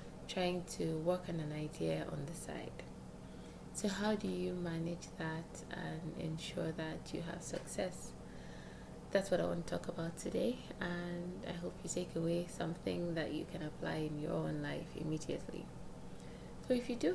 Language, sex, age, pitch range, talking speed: English, female, 20-39, 160-185 Hz, 170 wpm